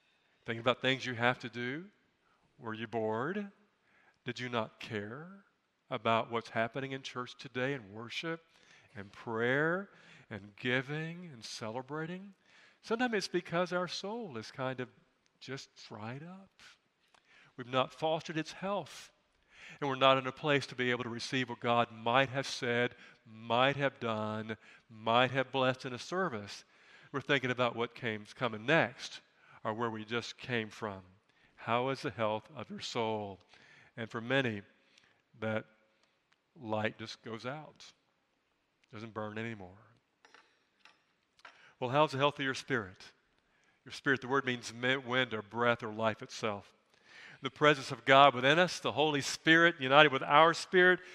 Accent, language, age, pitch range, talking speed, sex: American, English, 50-69, 115-155 Hz, 155 wpm, male